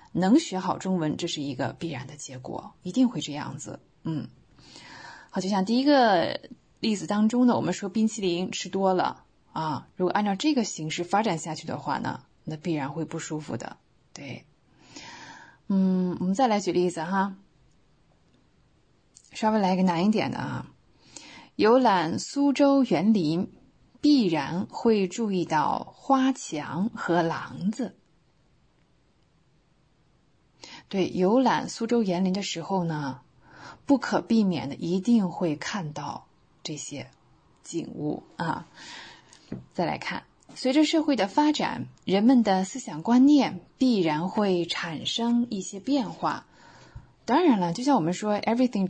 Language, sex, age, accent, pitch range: English, female, 20-39, Chinese, 170-230 Hz